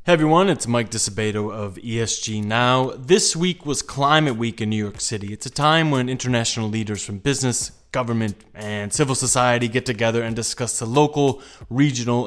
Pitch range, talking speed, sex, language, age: 110-140 Hz, 175 wpm, male, English, 20-39